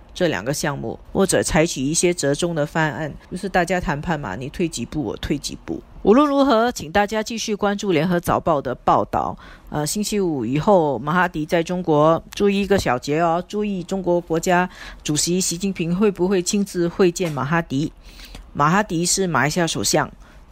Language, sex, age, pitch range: Chinese, female, 50-69, 155-200 Hz